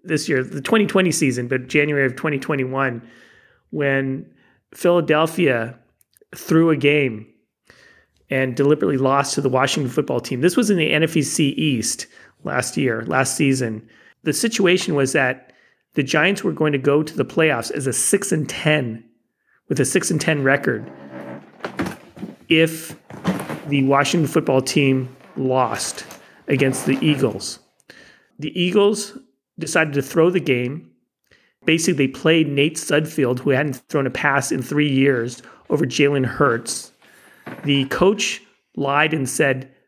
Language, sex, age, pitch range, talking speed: English, male, 40-59, 130-155 Hz, 135 wpm